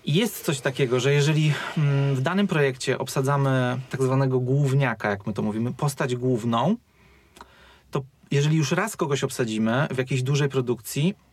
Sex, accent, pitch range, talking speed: male, native, 130-160 Hz, 150 wpm